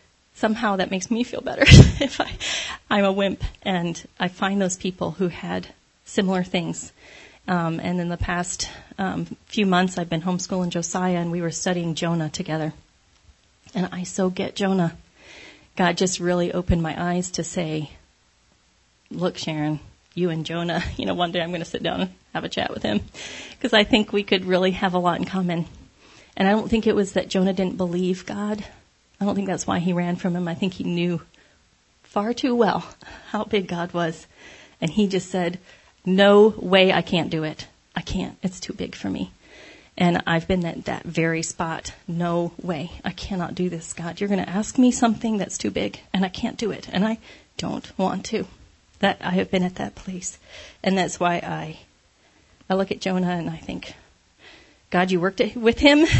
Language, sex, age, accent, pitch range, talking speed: English, female, 30-49, American, 170-200 Hz, 200 wpm